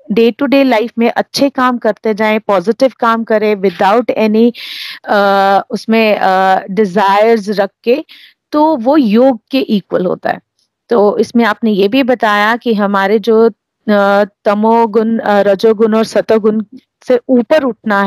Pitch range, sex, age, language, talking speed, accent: 210-265 Hz, female, 30-49, Hindi, 135 wpm, native